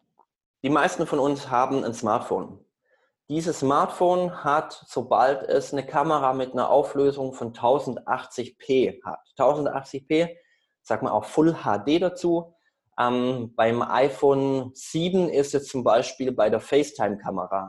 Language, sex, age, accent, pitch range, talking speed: German, male, 20-39, German, 120-160 Hz, 130 wpm